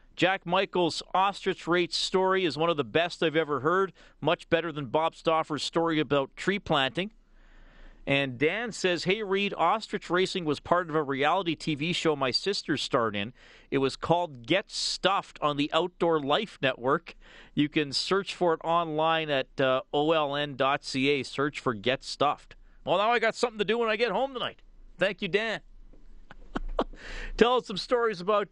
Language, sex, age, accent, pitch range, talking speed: English, male, 40-59, American, 145-190 Hz, 175 wpm